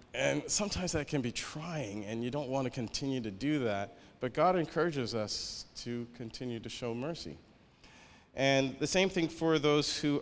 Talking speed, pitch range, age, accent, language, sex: 180 wpm, 110-145 Hz, 40-59, American, English, male